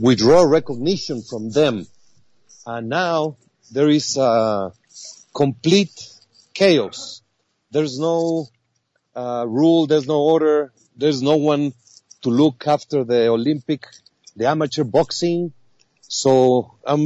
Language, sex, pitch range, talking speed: English, male, 125-160 Hz, 115 wpm